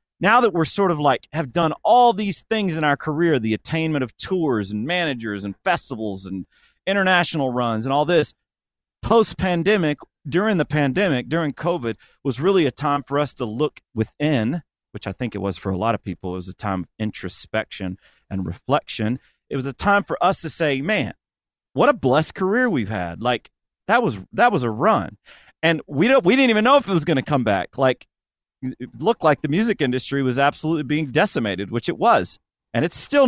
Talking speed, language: 205 wpm, English